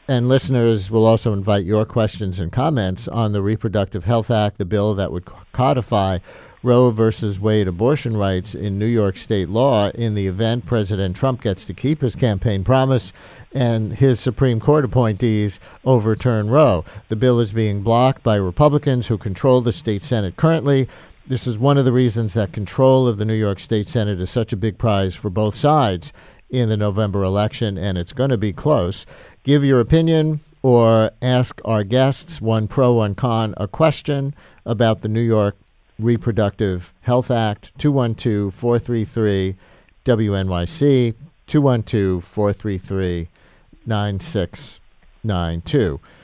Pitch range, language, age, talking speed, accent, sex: 105-130 Hz, English, 50-69, 150 wpm, American, male